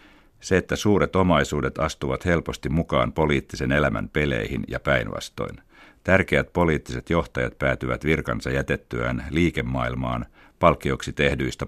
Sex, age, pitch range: male, 60-79, 65-80 Hz